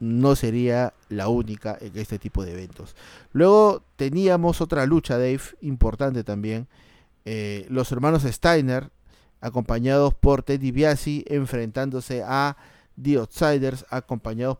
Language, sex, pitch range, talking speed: Spanish, male, 115-145 Hz, 120 wpm